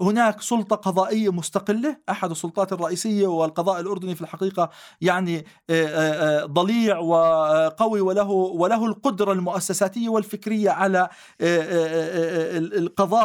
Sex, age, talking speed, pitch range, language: male, 40-59, 90 wpm, 195-235 Hz, Arabic